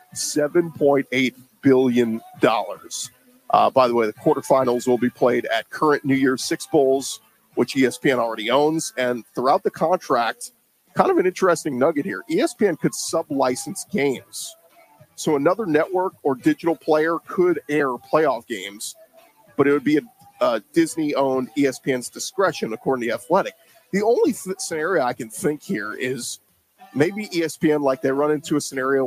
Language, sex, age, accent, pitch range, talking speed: English, male, 40-59, American, 130-170 Hz, 155 wpm